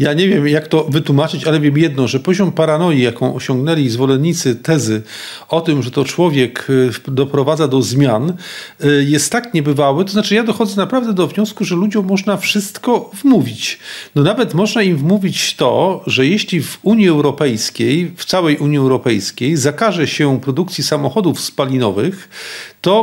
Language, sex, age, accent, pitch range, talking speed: Polish, male, 40-59, native, 145-200 Hz, 155 wpm